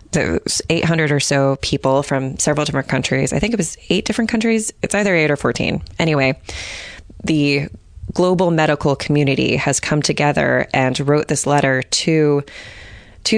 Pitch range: 140-170 Hz